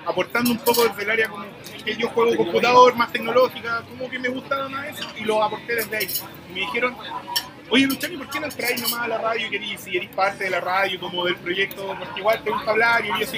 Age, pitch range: 30-49, 185-235 Hz